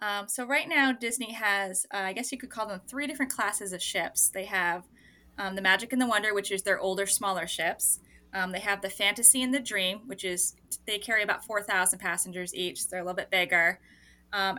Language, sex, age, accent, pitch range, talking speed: English, female, 20-39, American, 190-230 Hz, 220 wpm